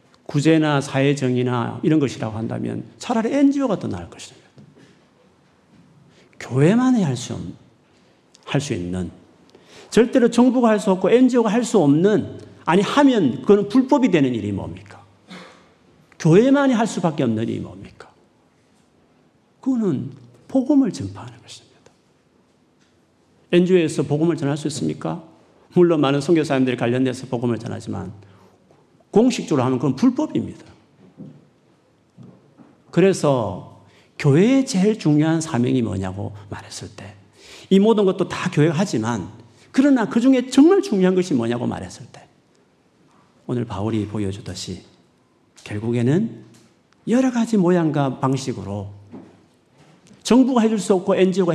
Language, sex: Korean, male